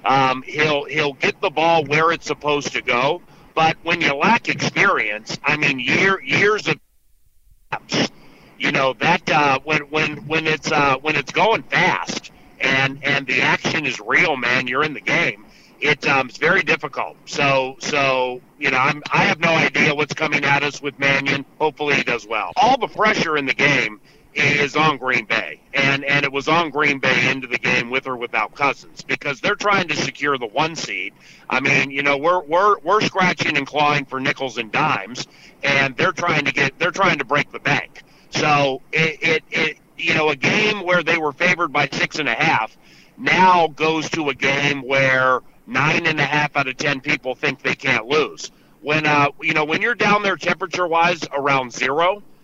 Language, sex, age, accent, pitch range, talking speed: English, male, 50-69, American, 140-165 Hz, 200 wpm